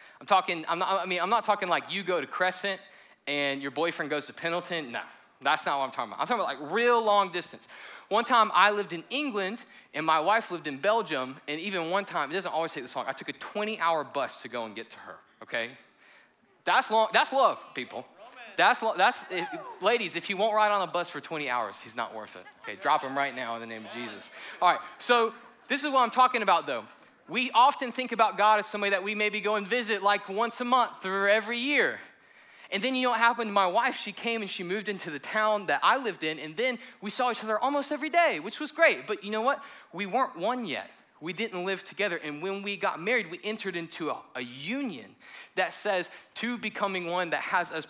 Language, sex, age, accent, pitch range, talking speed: English, male, 20-39, American, 170-230 Hz, 245 wpm